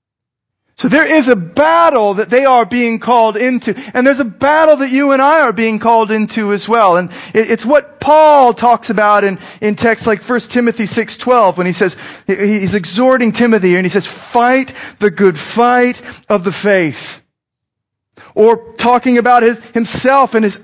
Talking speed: 175 wpm